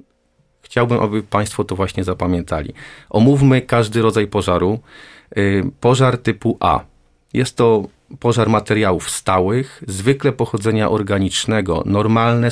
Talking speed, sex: 105 wpm, male